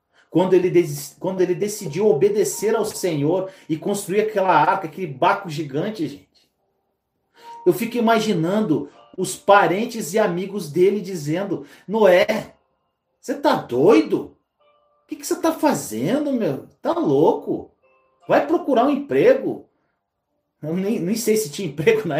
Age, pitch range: 40-59, 160-230 Hz